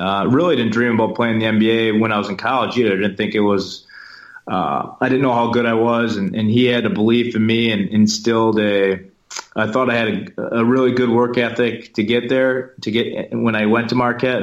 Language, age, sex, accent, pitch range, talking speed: English, 30-49, male, American, 95-110 Hz, 245 wpm